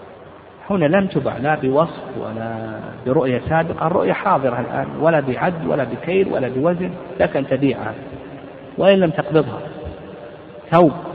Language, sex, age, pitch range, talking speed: Arabic, male, 50-69, 135-160 Hz, 125 wpm